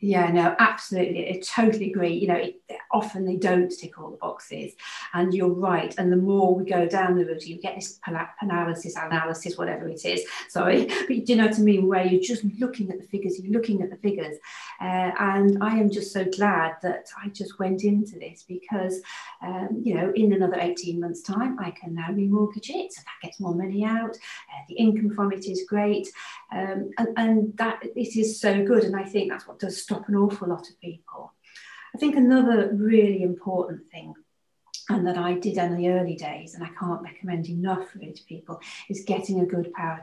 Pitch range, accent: 175-205 Hz, British